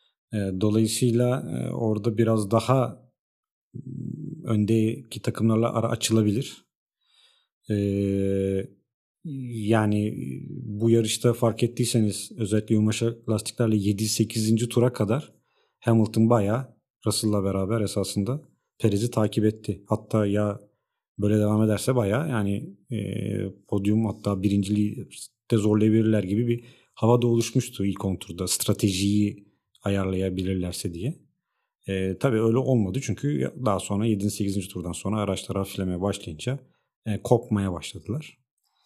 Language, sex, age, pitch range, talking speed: Turkish, male, 40-59, 100-120 Hz, 105 wpm